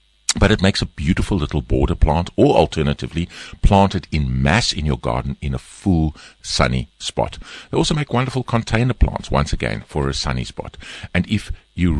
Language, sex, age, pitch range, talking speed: English, male, 50-69, 70-90 Hz, 185 wpm